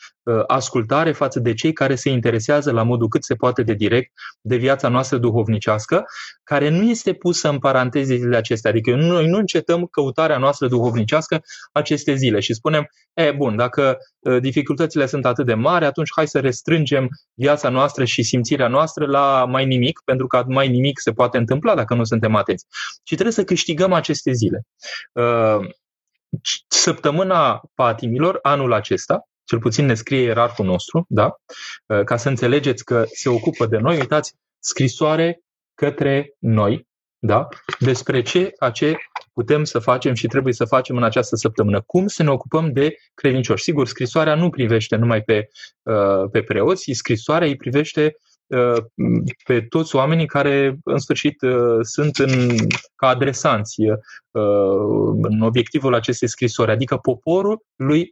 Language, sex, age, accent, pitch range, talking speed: Romanian, male, 20-39, native, 120-150 Hz, 150 wpm